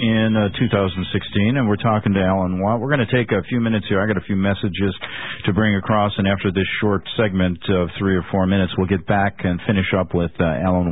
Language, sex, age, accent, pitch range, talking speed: English, male, 50-69, American, 90-110 Hz, 240 wpm